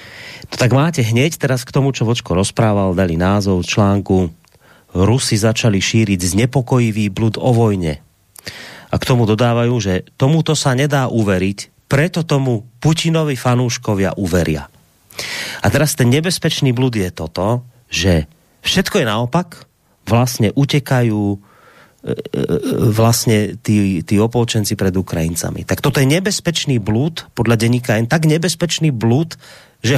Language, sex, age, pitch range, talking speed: Slovak, male, 30-49, 105-145 Hz, 130 wpm